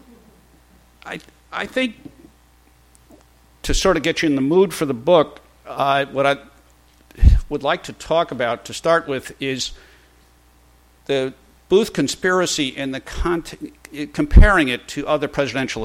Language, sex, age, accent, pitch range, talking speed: English, male, 50-69, American, 110-155 Hz, 135 wpm